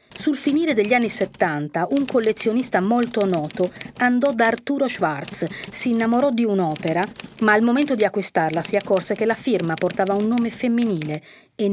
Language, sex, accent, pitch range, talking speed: Italian, female, native, 185-250 Hz, 165 wpm